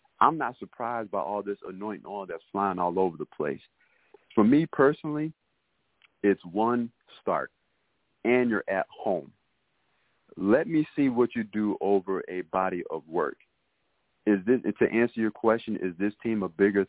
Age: 40-59